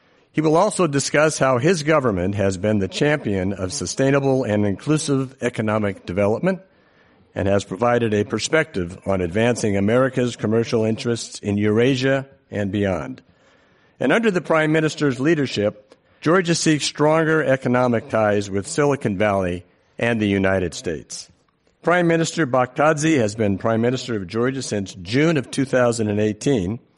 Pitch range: 100-135 Hz